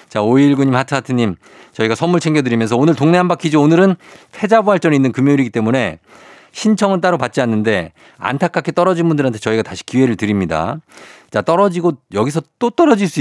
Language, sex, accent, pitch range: Korean, male, native, 115-165 Hz